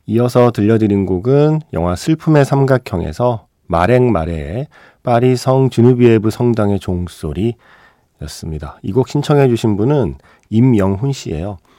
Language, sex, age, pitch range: Korean, male, 40-59, 90-130 Hz